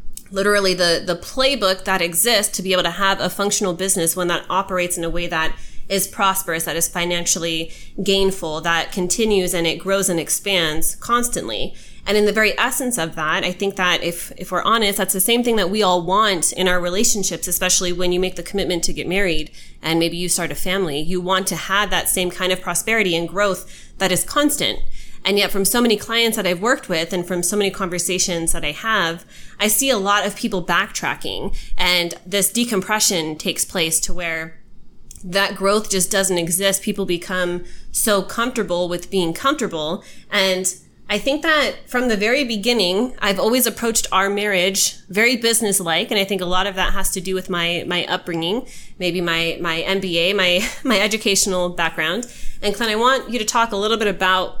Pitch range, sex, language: 175-210 Hz, female, English